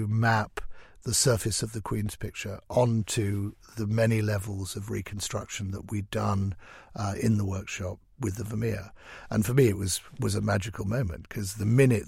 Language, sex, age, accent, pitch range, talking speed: English, male, 50-69, British, 100-115 Hz, 175 wpm